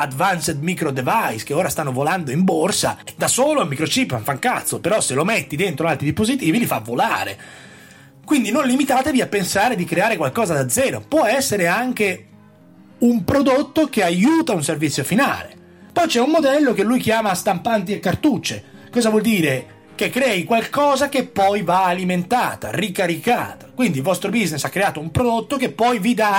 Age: 30-49